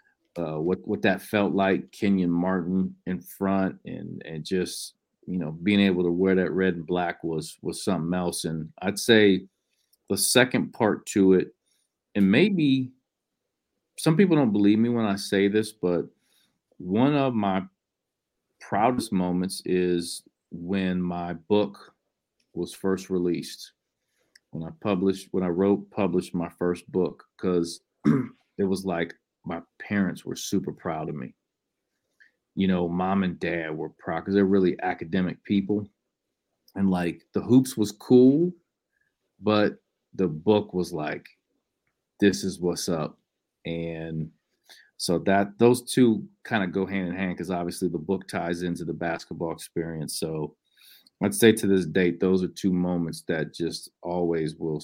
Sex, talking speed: male, 155 wpm